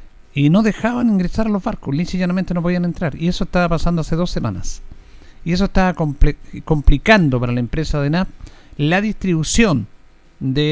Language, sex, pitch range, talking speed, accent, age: Spanish, male, 125-190 Hz, 170 wpm, Argentinian, 50-69